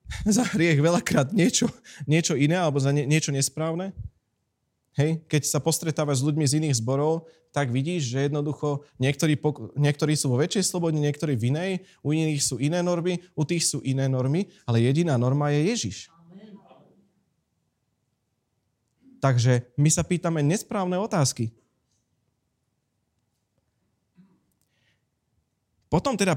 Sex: male